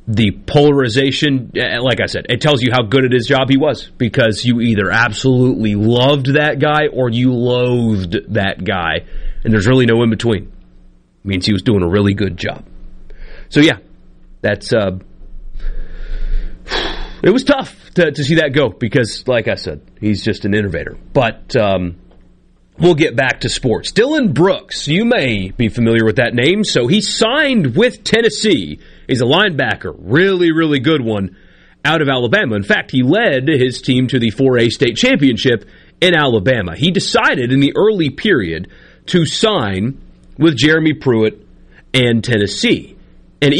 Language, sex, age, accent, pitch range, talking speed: English, male, 30-49, American, 110-150 Hz, 165 wpm